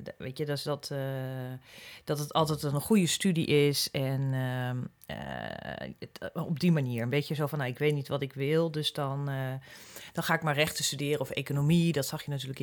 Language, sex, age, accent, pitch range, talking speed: Dutch, female, 40-59, Dutch, 130-165 Hz, 210 wpm